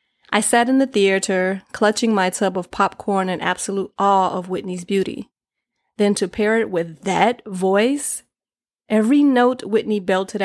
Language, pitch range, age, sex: English, 190-225 Hz, 30-49, female